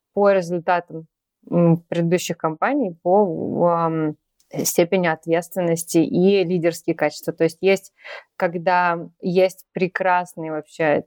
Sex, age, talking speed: female, 20-39, 100 wpm